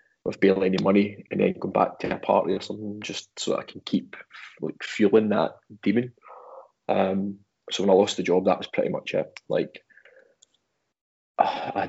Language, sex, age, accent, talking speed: English, male, 20-39, British, 180 wpm